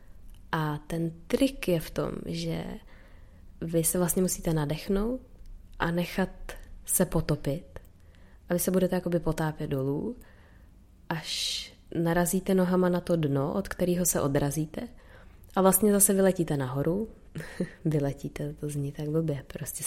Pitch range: 150-185 Hz